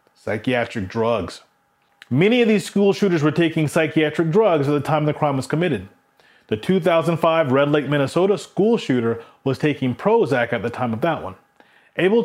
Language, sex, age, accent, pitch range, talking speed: English, male, 30-49, American, 135-180 Hz, 170 wpm